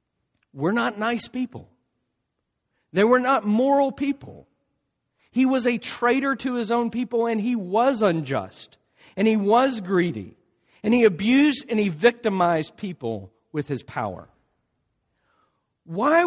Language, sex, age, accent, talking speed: English, male, 50-69, American, 135 wpm